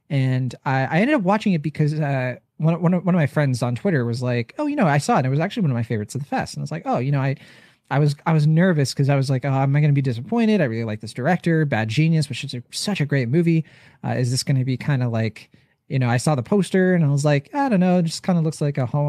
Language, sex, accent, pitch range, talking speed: English, male, American, 130-165 Hz, 330 wpm